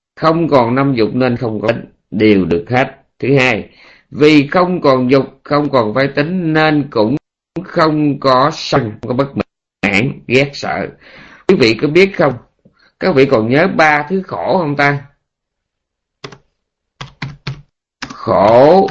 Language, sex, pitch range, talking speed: Vietnamese, male, 105-140 Hz, 150 wpm